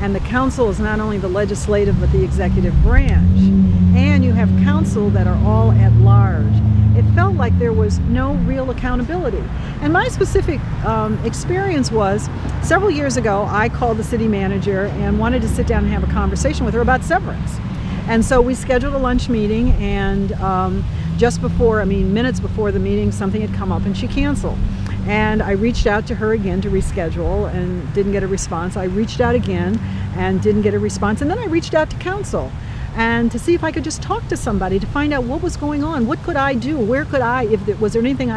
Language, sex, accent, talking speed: English, female, American, 215 wpm